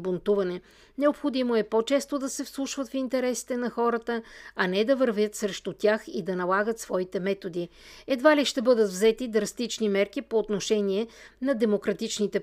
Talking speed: 160 wpm